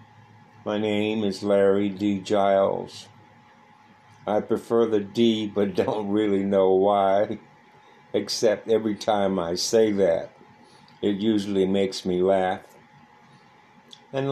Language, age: English, 60-79